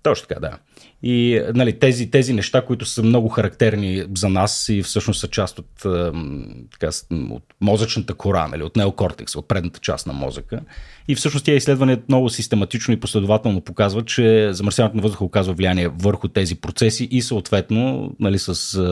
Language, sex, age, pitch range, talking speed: Bulgarian, male, 40-59, 90-115 Hz, 170 wpm